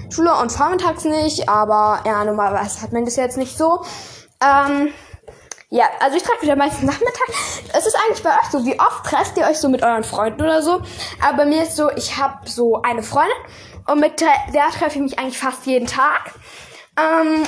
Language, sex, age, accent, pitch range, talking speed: German, female, 10-29, German, 260-355 Hz, 205 wpm